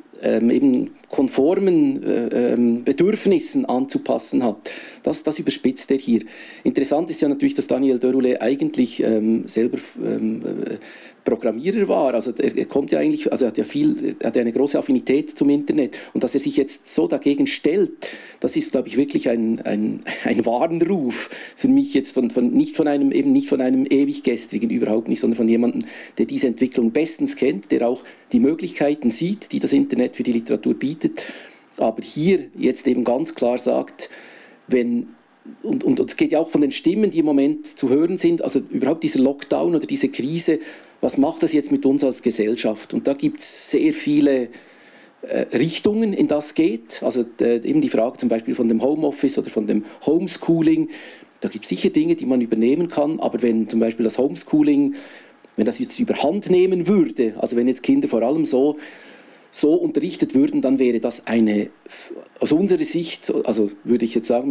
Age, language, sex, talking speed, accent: 50-69, German, male, 185 wpm, Austrian